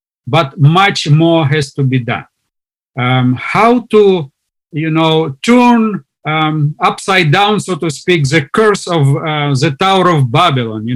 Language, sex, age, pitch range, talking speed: English, male, 50-69, 140-175 Hz, 155 wpm